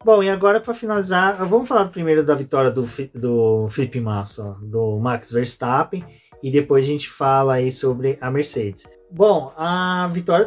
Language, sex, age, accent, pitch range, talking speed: Portuguese, male, 20-39, Brazilian, 125-155 Hz, 170 wpm